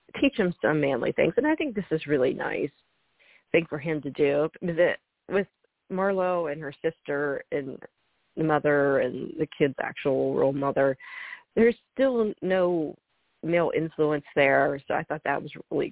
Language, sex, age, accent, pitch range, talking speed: English, female, 40-59, American, 145-195 Hz, 160 wpm